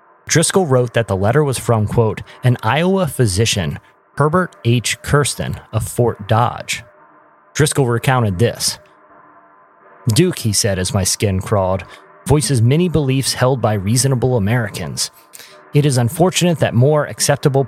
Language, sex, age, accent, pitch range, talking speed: English, male, 30-49, American, 100-135 Hz, 135 wpm